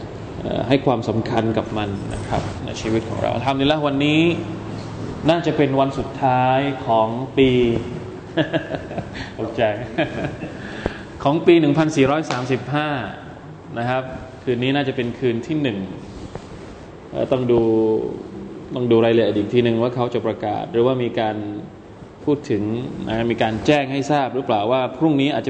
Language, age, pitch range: Thai, 20-39, 120-145 Hz